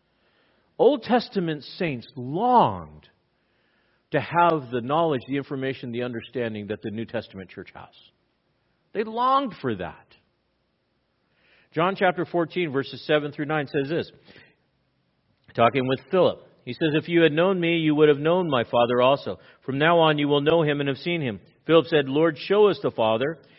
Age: 50-69